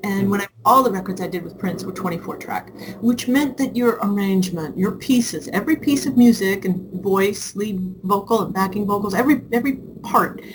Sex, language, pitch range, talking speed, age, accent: female, English, 190-250 Hz, 190 wpm, 40-59, American